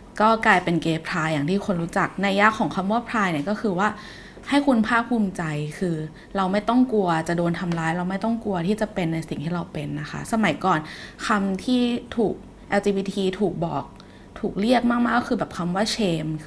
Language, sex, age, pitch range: Thai, female, 20-39, 170-220 Hz